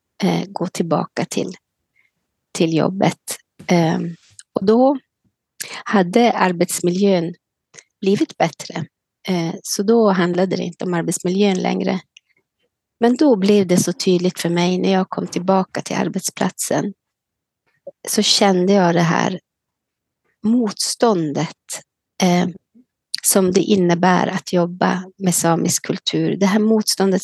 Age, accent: 30-49, native